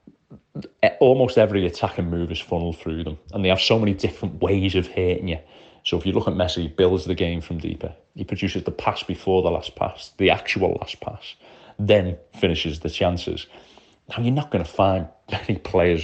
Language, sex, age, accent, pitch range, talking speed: English, male, 30-49, British, 85-100 Hz, 205 wpm